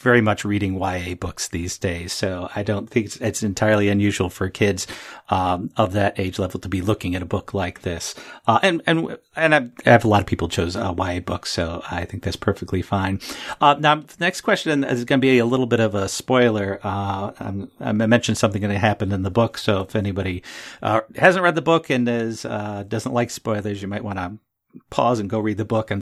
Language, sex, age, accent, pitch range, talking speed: English, male, 50-69, American, 100-125 Hz, 230 wpm